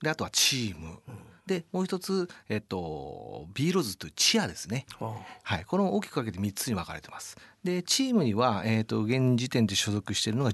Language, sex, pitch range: Japanese, male, 105-155 Hz